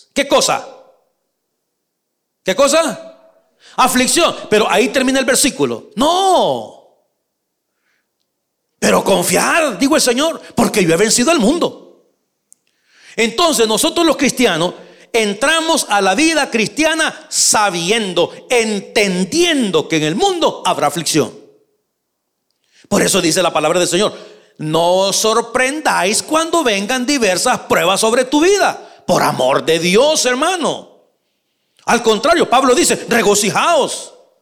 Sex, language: male, Spanish